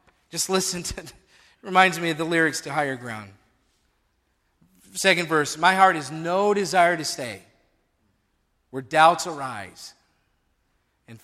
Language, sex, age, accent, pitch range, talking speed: English, male, 40-59, American, 150-210 Hz, 135 wpm